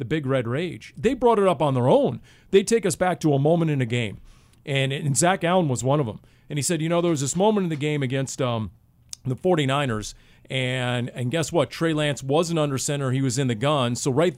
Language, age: English, 40-59